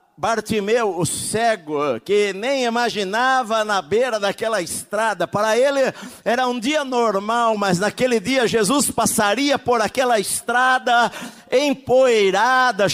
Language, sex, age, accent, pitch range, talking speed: Portuguese, male, 50-69, Brazilian, 180-255 Hz, 115 wpm